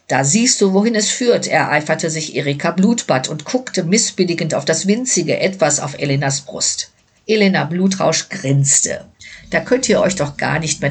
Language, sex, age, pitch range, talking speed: German, female, 50-69, 140-195 Hz, 170 wpm